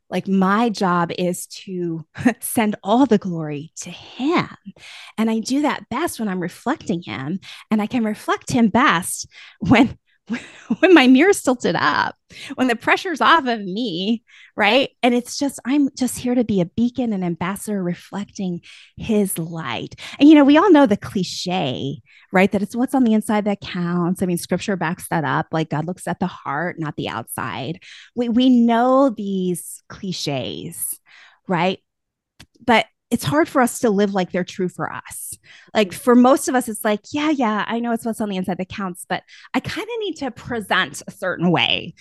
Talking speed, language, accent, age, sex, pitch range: 190 wpm, English, American, 20-39, female, 175-250 Hz